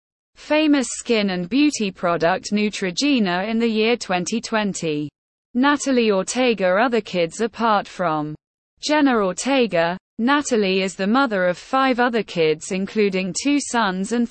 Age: 20-39